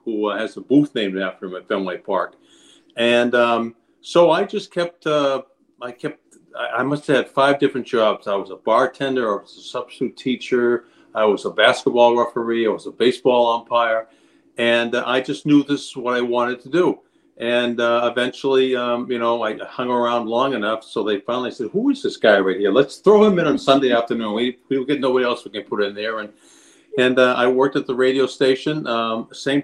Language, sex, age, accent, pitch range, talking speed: English, male, 50-69, American, 115-145 Hz, 210 wpm